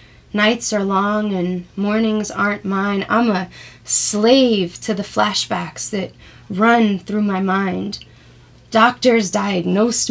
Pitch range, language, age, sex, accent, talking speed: 190-225 Hz, English, 20-39, female, American, 120 wpm